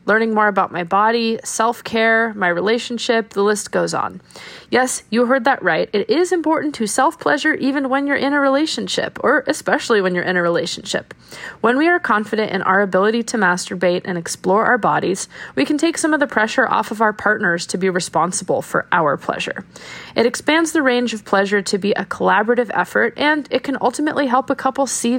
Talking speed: 200 wpm